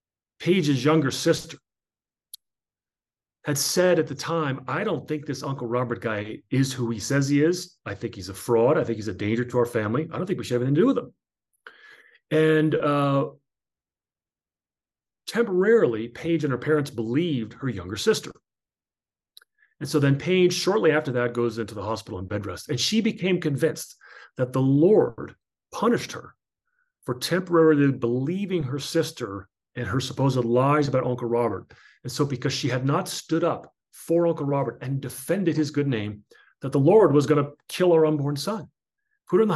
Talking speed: 180 wpm